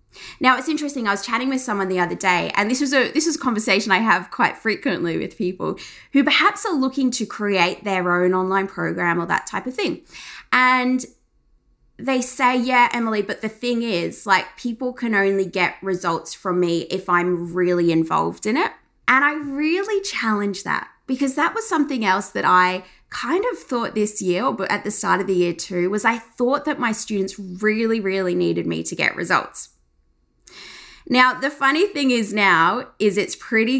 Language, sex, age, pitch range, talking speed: English, female, 20-39, 190-275 Hz, 195 wpm